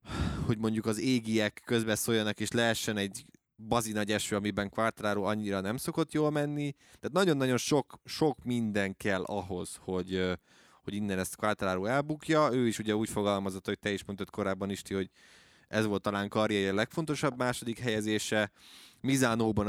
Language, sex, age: Hungarian, male, 20-39